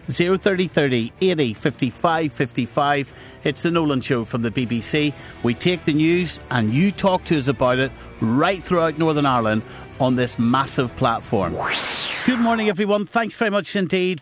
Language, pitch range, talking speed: English, 120-155 Hz, 175 wpm